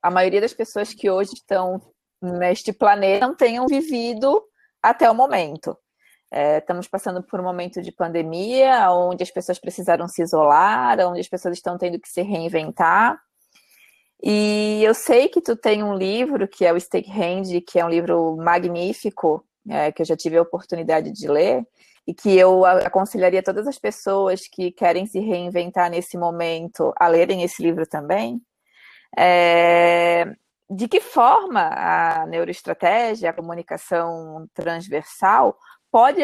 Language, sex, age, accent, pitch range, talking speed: Portuguese, female, 20-39, Brazilian, 175-225 Hz, 150 wpm